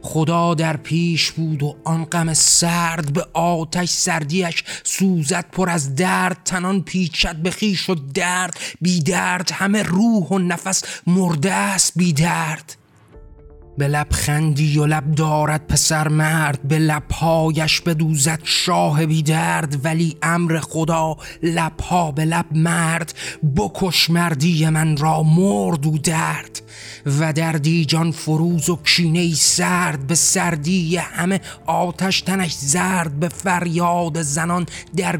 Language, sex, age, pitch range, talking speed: Persian, male, 30-49, 155-175 Hz, 130 wpm